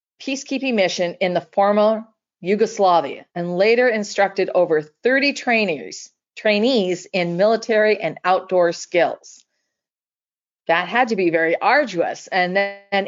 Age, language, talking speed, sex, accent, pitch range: 40-59, English, 115 wpm, female, American, 185-235 Hz